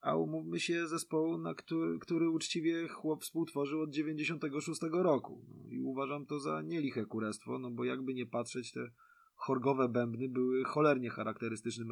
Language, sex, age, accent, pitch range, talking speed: Polish, male, 20-39, native, 110-145 Hz, 155 wpm